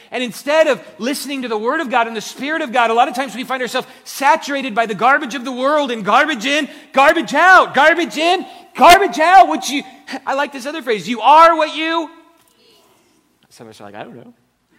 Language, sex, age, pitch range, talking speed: English, male, 40-59, 225-310 Hz, 230 wpm